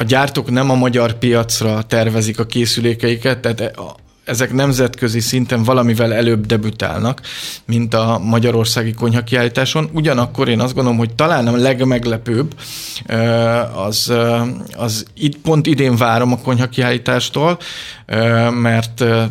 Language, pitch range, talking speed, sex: Hungarian, 115-130 Hz, 115 wpm, male